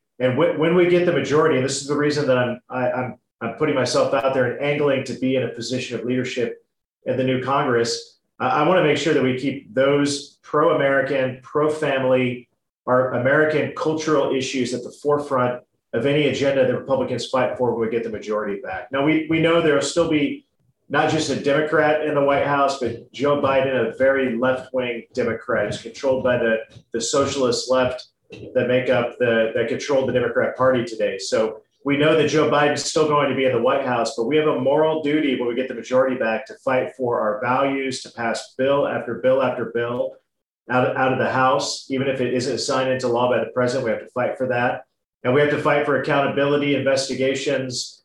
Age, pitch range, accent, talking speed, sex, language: 40-59, 125-145 Hz, American, 215 wpm, male, English